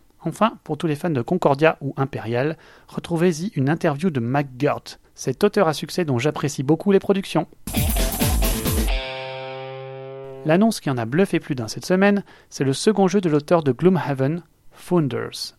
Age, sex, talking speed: 30-49, male, 160 wpm